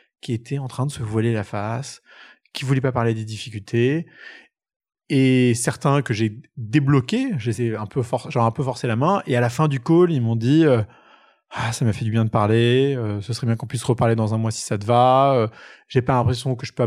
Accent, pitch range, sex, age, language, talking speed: French, 110-135 Hz, male, 20-39, French, 240 wpm